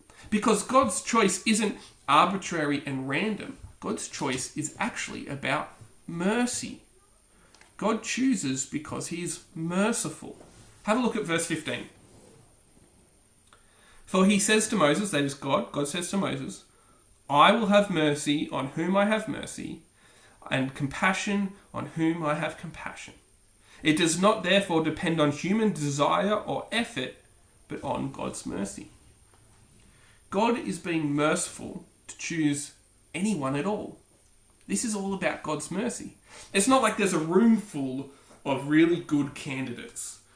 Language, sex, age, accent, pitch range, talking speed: English, male, 30-49, Australian, 135-205 Hz, 140 wpm